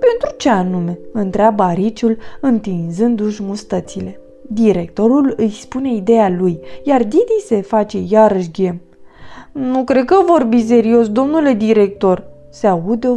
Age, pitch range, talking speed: 20-39, 190-275 Hz, 130 wpm